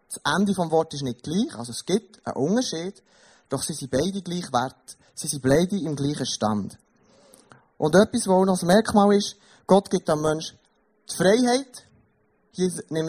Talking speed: 175 wpm